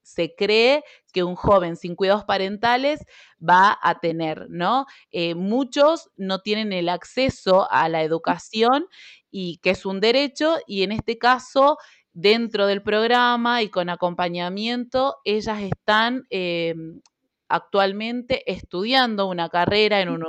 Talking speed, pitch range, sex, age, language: 135 wpm, 180-245 Hz, female, 20-39, Spanish